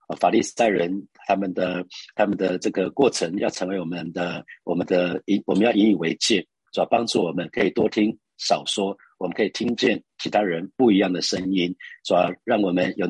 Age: 50-69